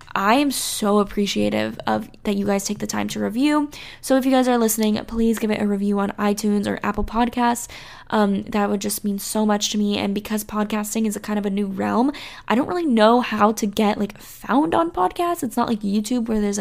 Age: 10-29